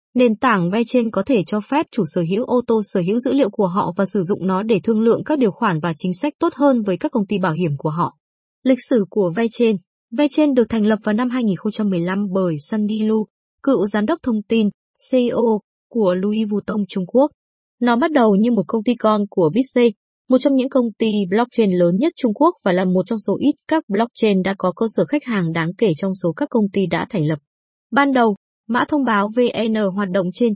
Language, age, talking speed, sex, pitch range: Vietnamese, 20-39, 235 wpm, female, 195-250 Hz